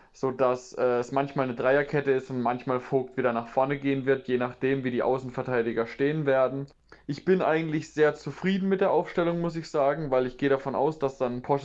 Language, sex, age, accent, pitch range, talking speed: German, male, 20-39, German, 125-140 Hz, 215 wpm